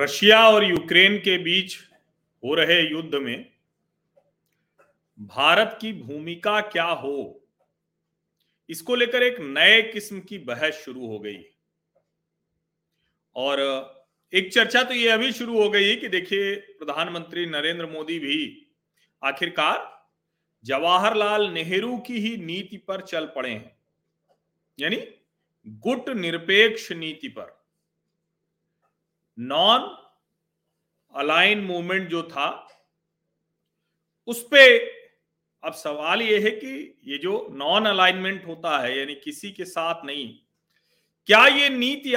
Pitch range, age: 170-240 Hz, 40-59